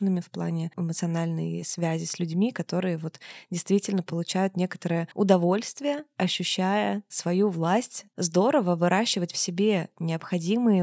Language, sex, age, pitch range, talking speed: Russian, female, 20-39, 170-200 Hz, 105 wpm